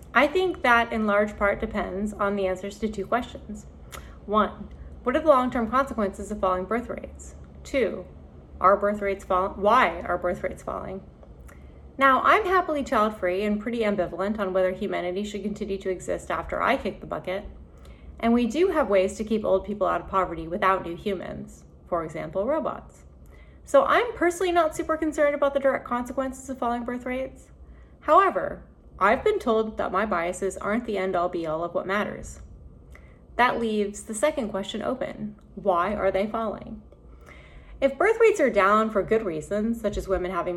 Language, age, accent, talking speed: English, 30-49, American, 175 wpm